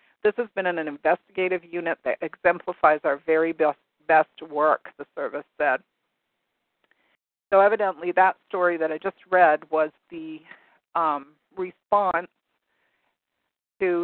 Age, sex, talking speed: 50-69, female, 125 wpm